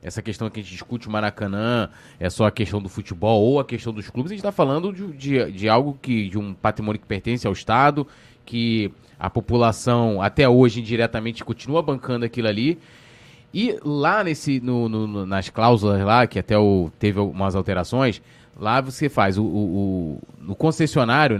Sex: male